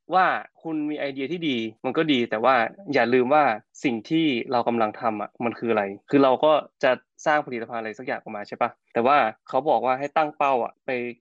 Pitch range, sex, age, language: 110-145 Hz, male, 20-39, Thai